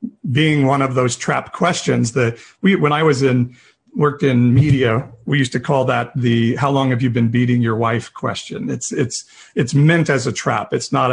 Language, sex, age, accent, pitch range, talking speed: English, male, 50-69, American, 120-140 Hz, 210 wpm